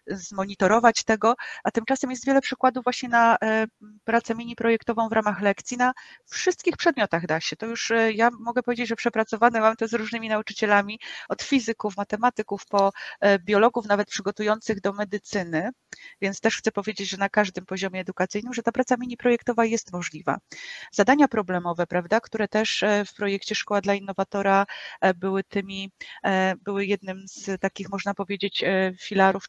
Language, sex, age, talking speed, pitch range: Polish, female, 30-49, 150 wpm, 195-235 Hz